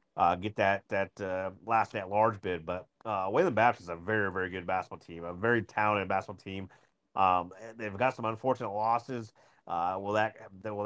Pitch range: 95-115 Hz